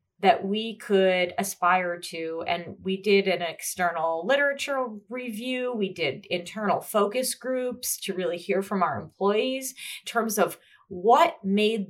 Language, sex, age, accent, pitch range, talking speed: English, female, 30-49, American, 165-205 Hz, 140 wpm